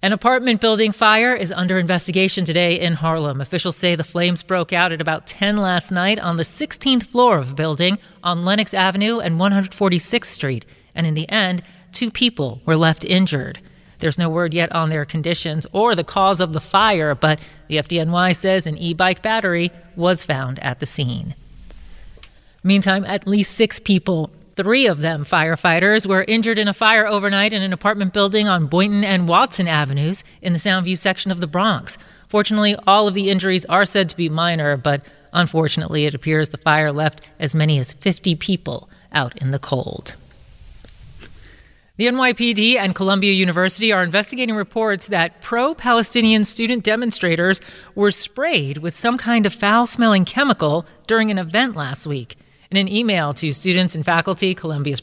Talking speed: 170 wpm